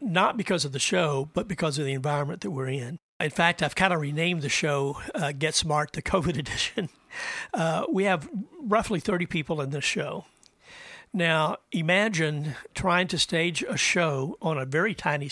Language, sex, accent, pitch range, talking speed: English, male, American, 145-180 Hz, 185 wpm